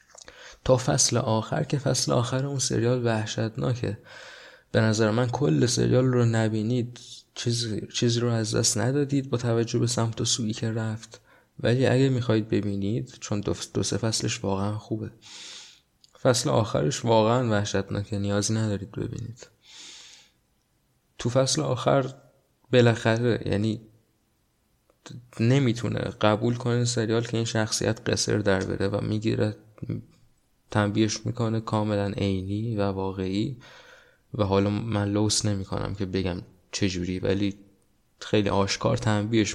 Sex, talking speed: male, 125 wpm